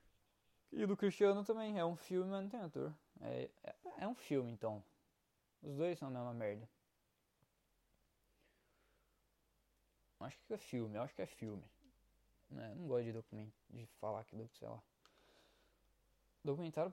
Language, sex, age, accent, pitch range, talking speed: Portuguese, male, 20-39, Brazilian, 110-145 Hz, 155 wpm